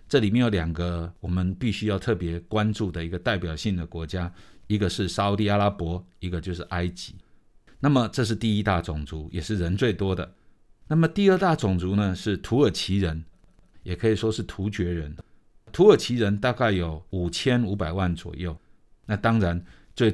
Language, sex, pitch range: Chinese, male, 90-115 Hz